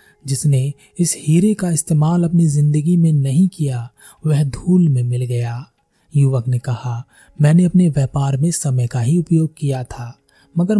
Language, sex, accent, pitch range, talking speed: Hindi, male, native, 130-160 Hz, 160 wpm